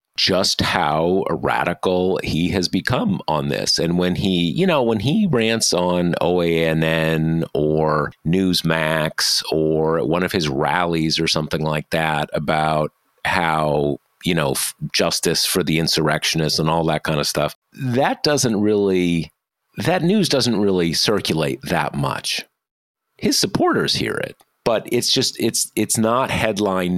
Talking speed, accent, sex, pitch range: 140 wpm, American, male, 80-105 Hz